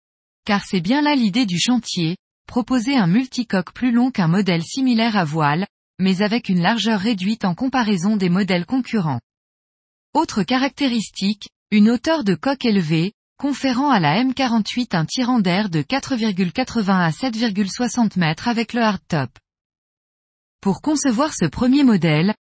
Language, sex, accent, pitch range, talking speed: French, female, French, 185-250 Hz, 145 wpm